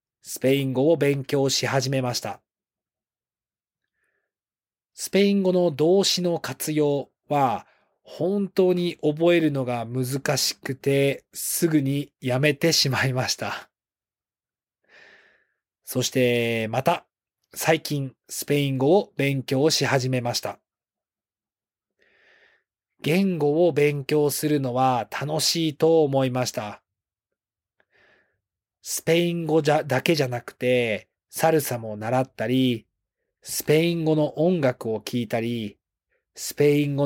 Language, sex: Japanese, male